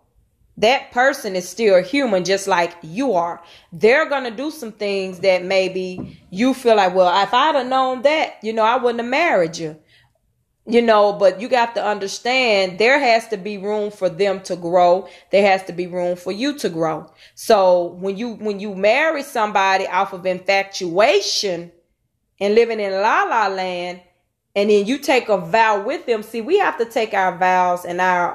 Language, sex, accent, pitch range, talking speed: English, female, American, 180-245 Hz, 195 wpm